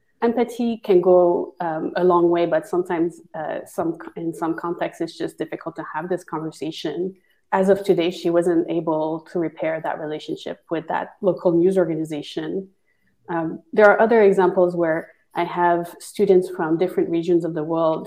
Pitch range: 165-200 Hz